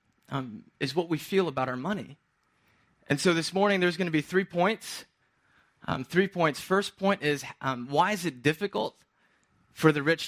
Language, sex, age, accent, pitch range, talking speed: English, male, 30-49, American, 130-175 Hz, 185 wpm